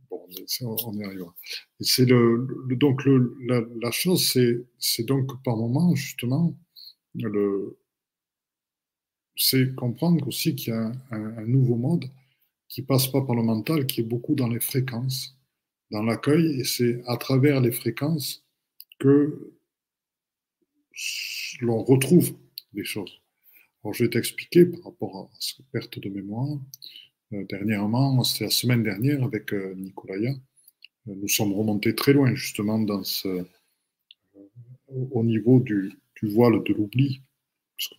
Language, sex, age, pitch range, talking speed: French, male, 50-69, 110-135 Hz, 145 wpm